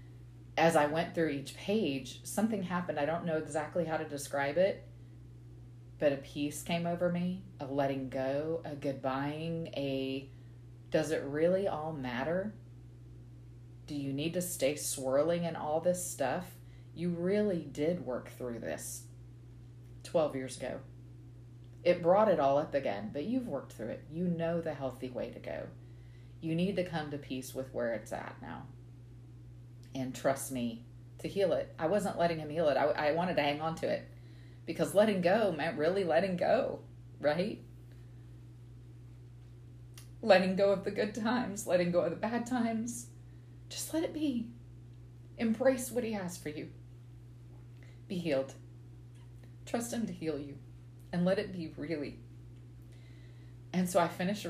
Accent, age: American, 30-49